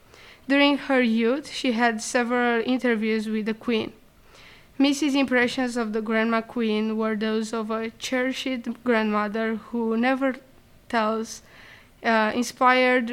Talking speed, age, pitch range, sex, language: 125 wpm, 20-39, 225-250 Hz, female, English